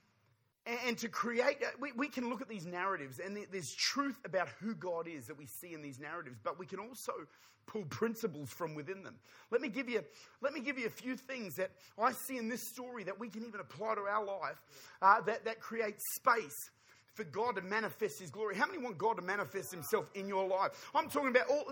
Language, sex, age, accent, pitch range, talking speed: English, male, 30-49, Australian, 185-255 Hz, 225 wpm